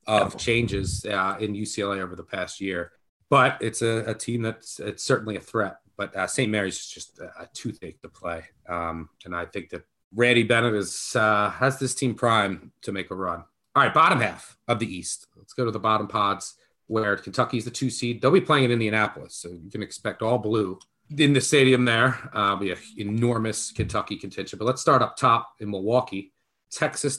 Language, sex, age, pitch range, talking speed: English, male, 30-49, 105-130 Hz, 210 wpm